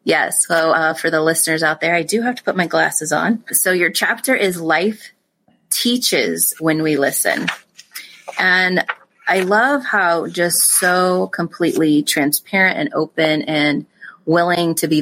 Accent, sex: American, female